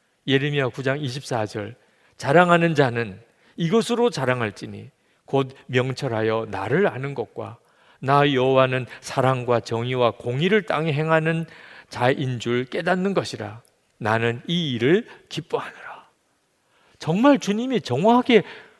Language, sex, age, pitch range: Korean, male, 40-59, 120-175 Hz